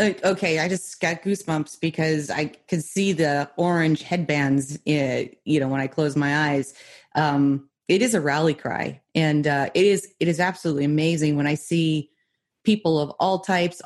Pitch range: 140-175 Hz